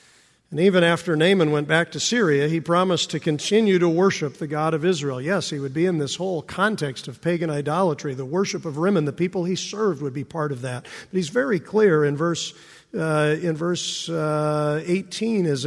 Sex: male